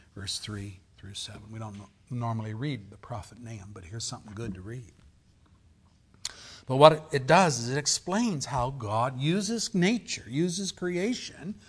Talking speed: 155 wpm